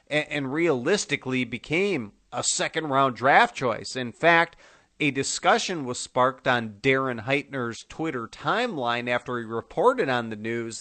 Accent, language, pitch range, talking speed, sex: American, English, 120-145 Hz, 140 wpm, male